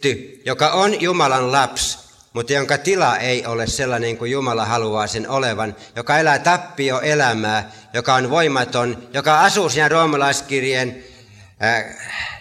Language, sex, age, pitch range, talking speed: Finnish, male, 60-79, 115-150 Hz, 125 wpm